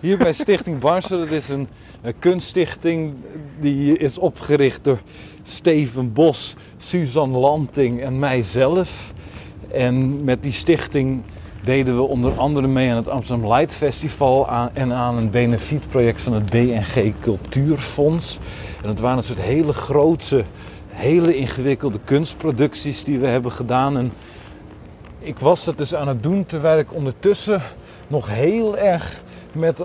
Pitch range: 125-155 Hz